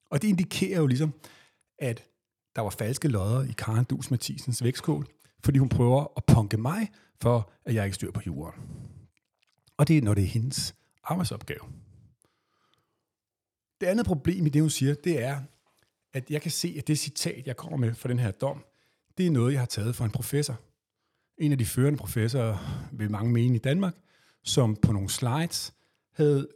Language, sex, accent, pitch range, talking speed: Danish, male, native, 110-150 Hz, 190 wpm